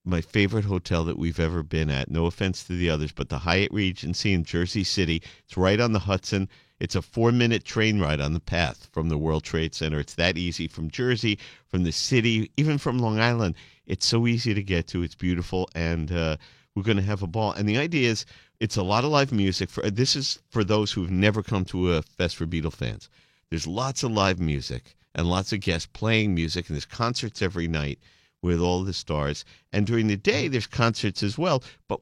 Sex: male